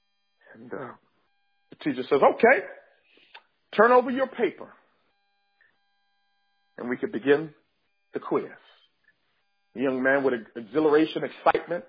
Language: English